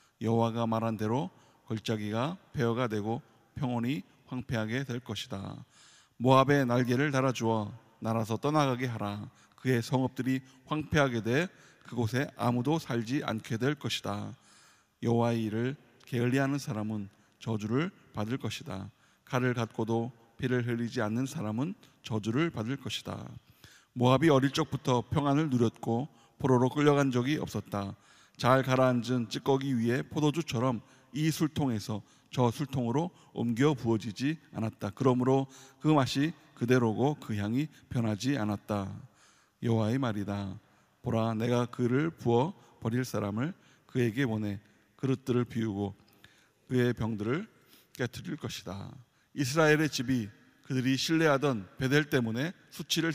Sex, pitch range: male, 115-140 Hz